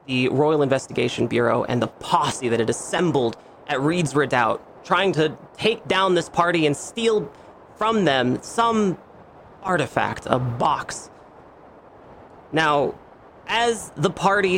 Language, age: English, 30-49